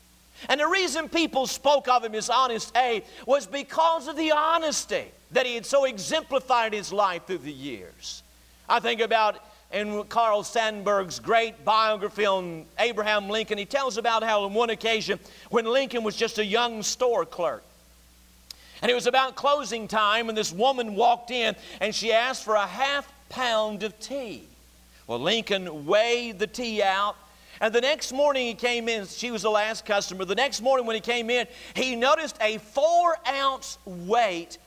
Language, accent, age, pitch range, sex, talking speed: English, American, 50-69, 200-260 Hz, male, 175 wpm